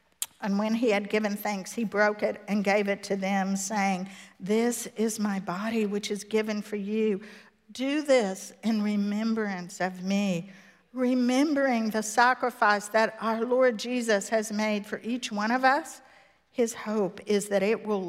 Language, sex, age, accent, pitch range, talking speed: English, female, 50-69, American, 195-235 Hz, 165 wpm